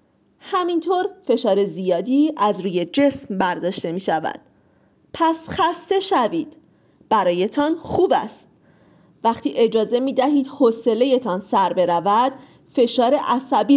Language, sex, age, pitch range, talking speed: Persian, female, 40-59, 205-295 Hz, 100 wpm